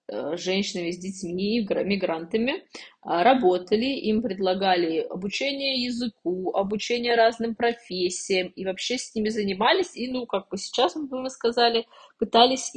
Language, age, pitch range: Russian, 20-39, 180-235 Hz